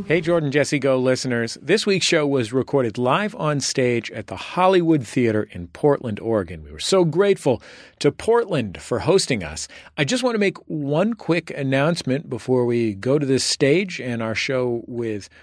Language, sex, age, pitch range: English, male, 40-59, 115-165 Hz